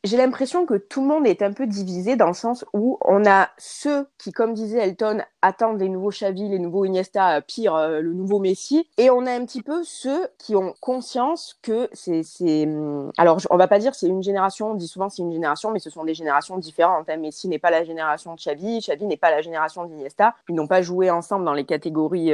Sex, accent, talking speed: female, French, 235 wpm